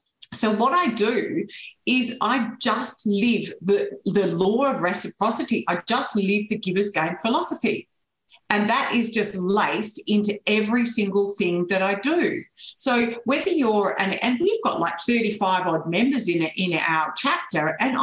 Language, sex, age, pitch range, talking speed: English, female, 50-69, 195-255 Hz, 165 wpm